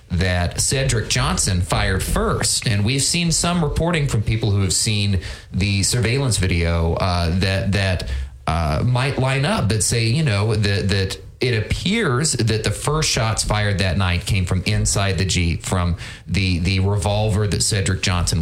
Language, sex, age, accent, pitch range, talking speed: English, male, 30-49, American, 95-125 Hz, 170 wpm